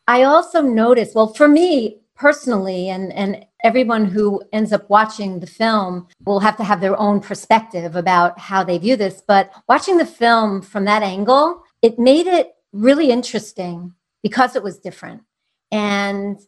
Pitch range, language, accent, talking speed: 185-225 Hz, English, American, 165 wpm